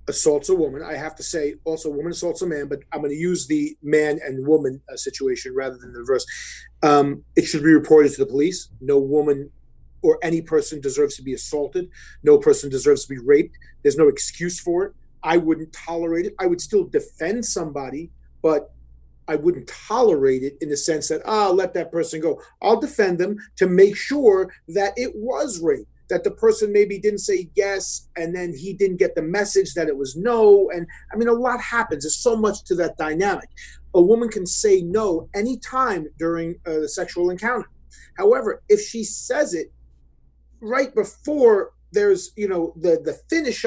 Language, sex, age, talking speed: English, male, 30-49, 195 wpm